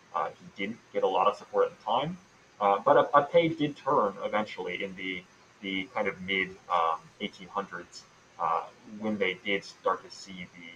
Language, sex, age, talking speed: English, male, 30-49, 185 wpm